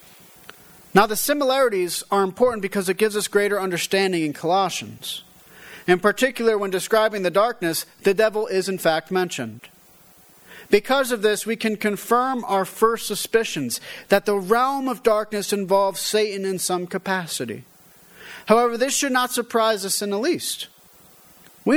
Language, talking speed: English, 150 wpm